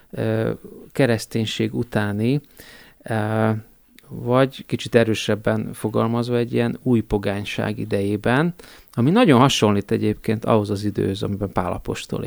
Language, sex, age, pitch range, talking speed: Hungarian, male, 30-49, 110-125 Hz, 105 wpm